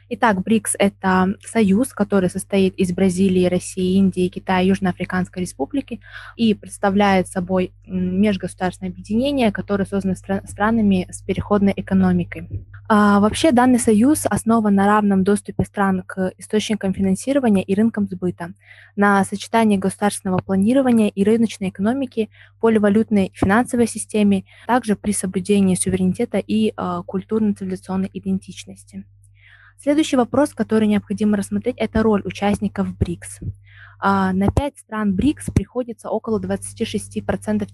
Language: Russian